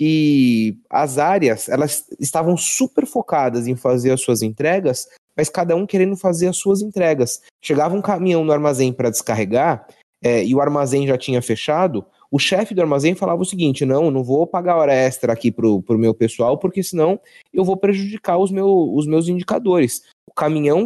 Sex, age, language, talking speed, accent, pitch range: male, 20-39, Portuguese, 185 wpm, Brazilian, 140-195 Hz